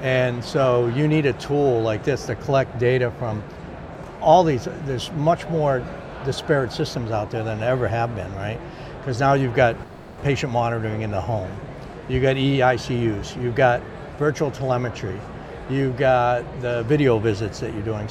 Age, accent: 60-79, American